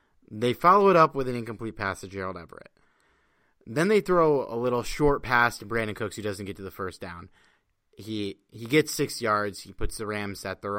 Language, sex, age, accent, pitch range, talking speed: English, male, 30-49, American, 100-130 Hz, 215 wpm